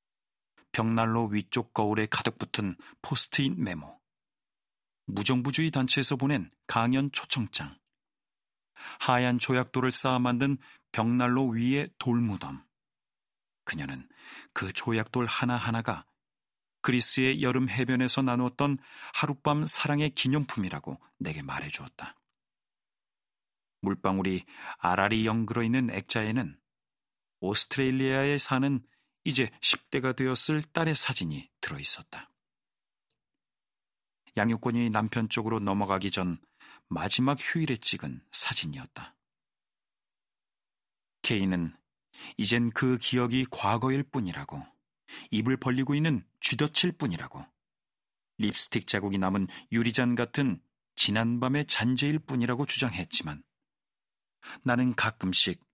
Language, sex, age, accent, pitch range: Korean, male, 40-59, native, 110-135 Hz